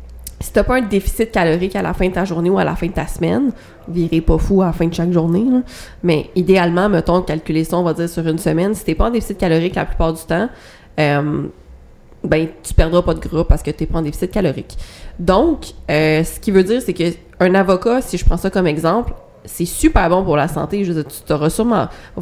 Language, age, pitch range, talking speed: French, 20-39, 165-200 Hz, 250 wpm